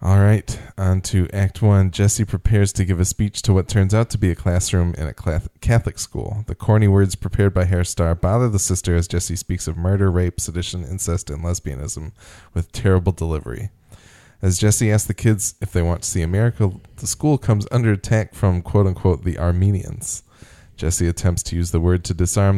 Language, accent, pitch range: English, American, 85-105 Hz